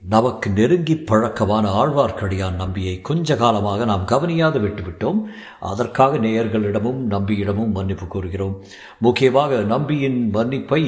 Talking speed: 100 wpm